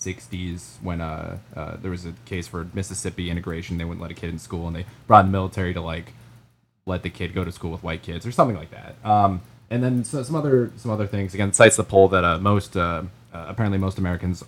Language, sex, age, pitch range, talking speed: English, male, 20-39, 90-120 Hz, 245 wpm